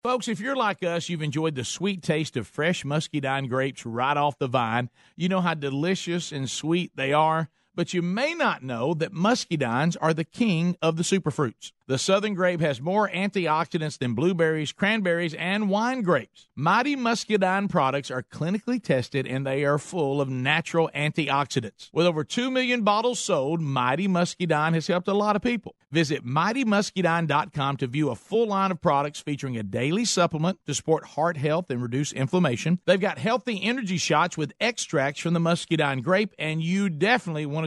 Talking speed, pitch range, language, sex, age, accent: 180 wpm, 145-195 Hz, English, male, 50-69, American